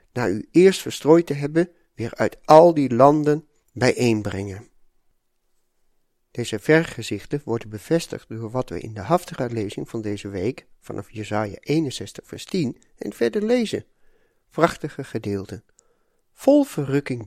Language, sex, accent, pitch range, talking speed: Dutch, male, Dutch, 110-165 Hz, 130 wpm